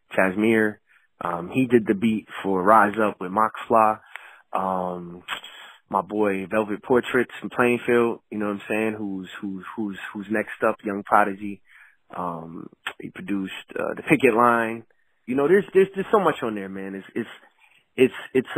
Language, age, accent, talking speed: English, 20-39, American, 170 wpm